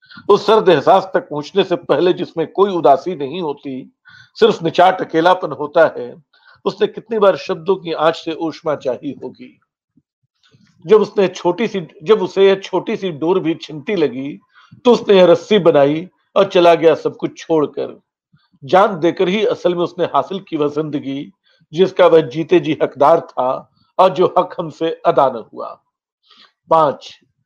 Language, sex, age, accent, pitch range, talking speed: Hindi, male, 50-69, native, 150-190 Hz, 150 wpm